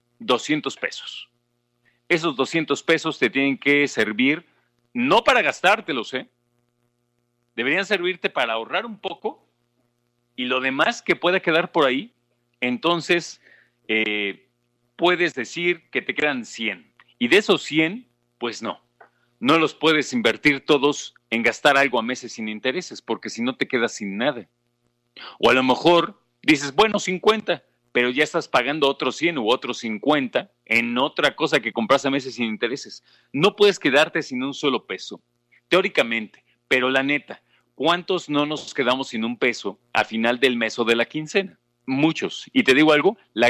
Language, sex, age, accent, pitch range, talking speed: Spanish, male, 40-59, Mexican, 120-165 Hz, 160 wpm